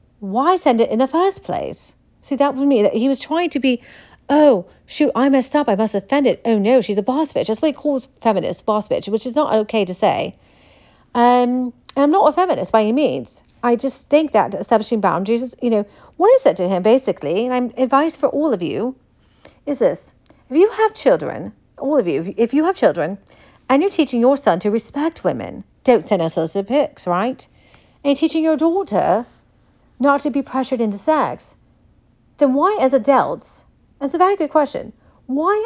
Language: English